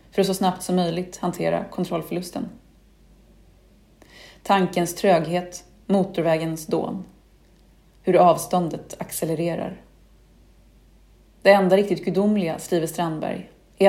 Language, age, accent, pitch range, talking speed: Swedish, 30-49, native, 175-210 Hz, 95 wpm